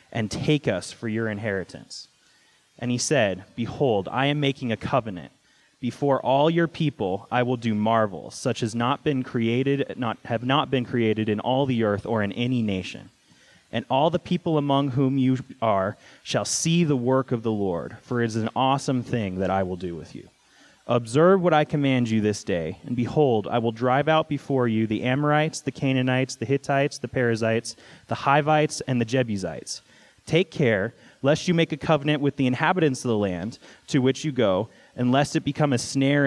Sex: male